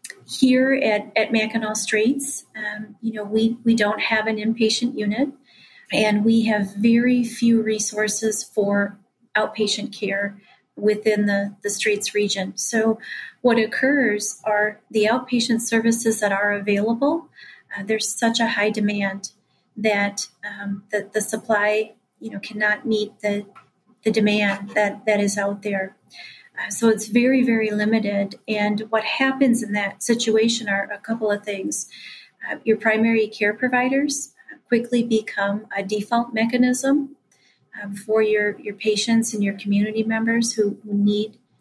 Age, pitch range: 40-59, 205-230 Hz